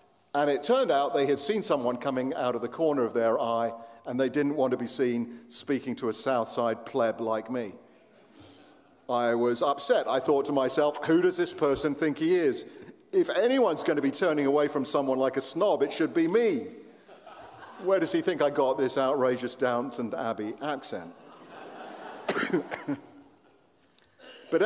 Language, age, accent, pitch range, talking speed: English, 50-69, British, 125-170 Hz, 175 wpm